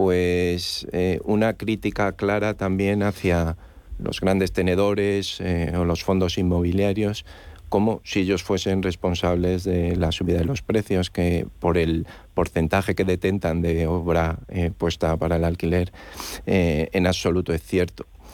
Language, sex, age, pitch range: Spanish, male, 40-59, 85-100 Hz